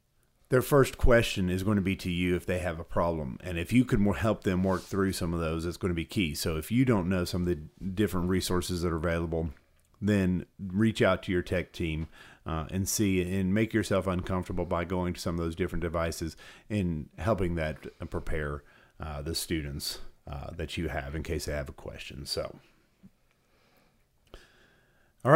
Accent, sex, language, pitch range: American, male, English, 85-110 Hz